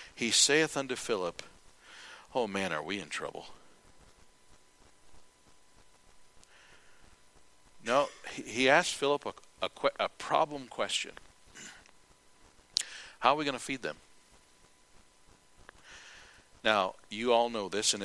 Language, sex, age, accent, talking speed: English, male, 60-79, American, 105 wpm